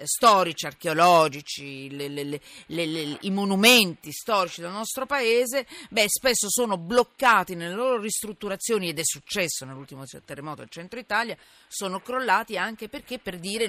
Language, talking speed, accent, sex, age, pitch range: Italian, 150 wpm, native, female, 40-59, 160-220 Hz